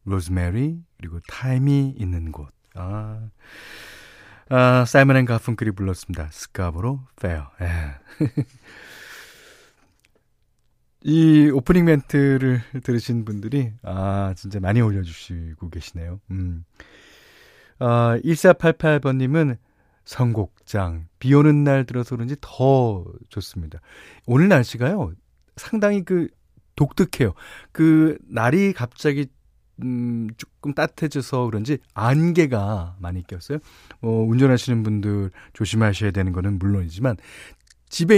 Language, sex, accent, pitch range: Korean, male, native, 100-145 Hz